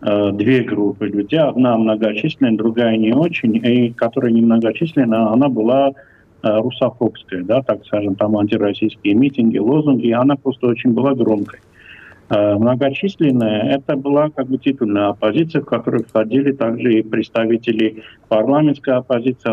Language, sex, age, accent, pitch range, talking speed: Russian, male, 50-69, native, 105-125 Hz, 130 wpm